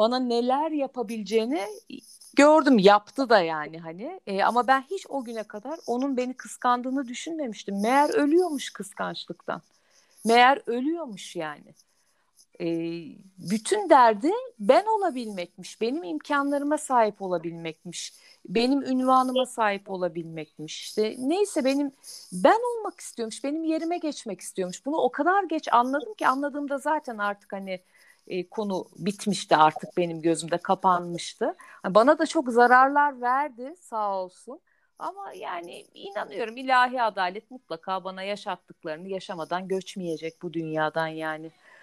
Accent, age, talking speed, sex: native, 50-69, 120 wpm, female